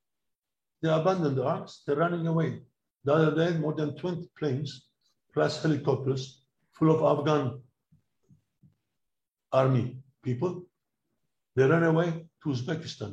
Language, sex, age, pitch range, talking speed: English, male, 60-79, 125-160 Hz, 115 wpm